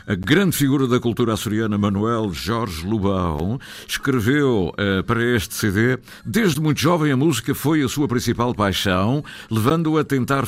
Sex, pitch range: male, 105-145 Hz